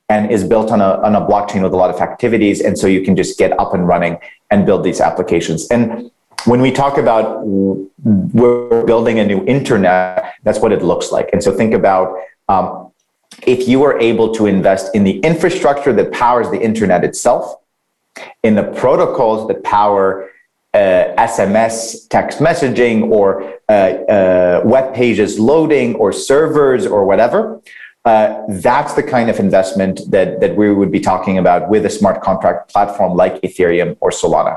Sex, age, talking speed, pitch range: male, 30-49, 175 wpm, 95-120 Hz